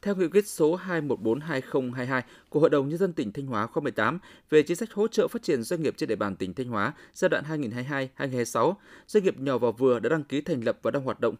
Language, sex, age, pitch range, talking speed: Vietnamese, male, 20-39, 125-170 Hz, 240 wpm